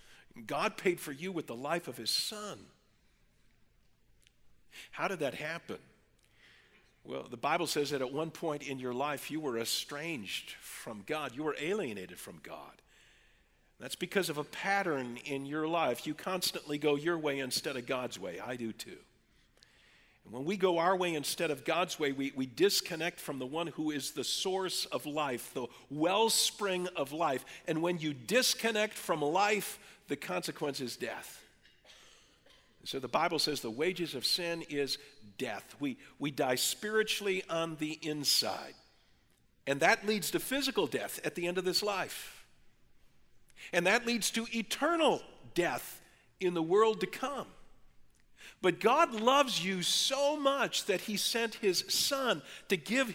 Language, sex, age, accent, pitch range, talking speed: English, male, 50-69, American, 145-210 Hz, 165 wpm